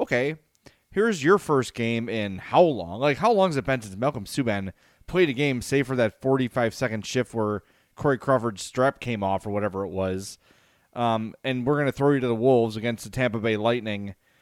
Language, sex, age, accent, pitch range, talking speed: English, male, 30-49, American, 115-155 Hz, 210 wpm